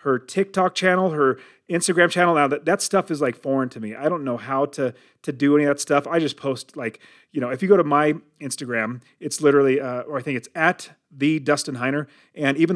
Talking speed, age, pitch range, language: 240 wpm, 30-49, 130-165 Hz, English